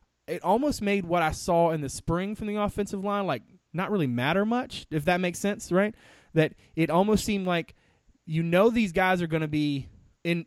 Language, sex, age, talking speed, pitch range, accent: English, male, 20-39, 210 wpm, 130-185 Hz, American